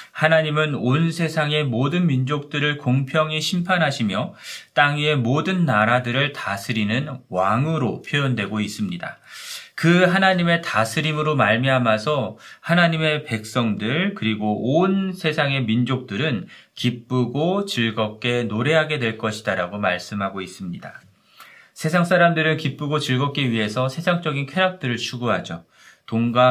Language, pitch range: Korean, 115-155 Hz